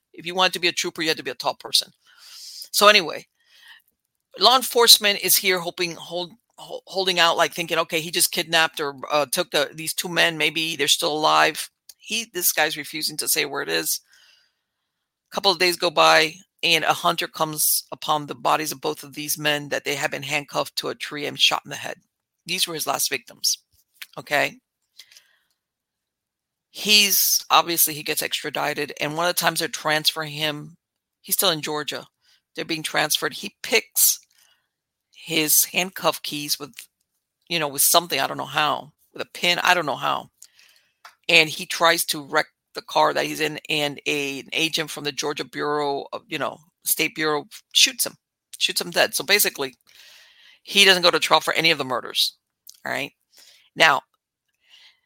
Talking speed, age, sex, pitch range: 185 wpm, 50-69, female, 150-180 Hz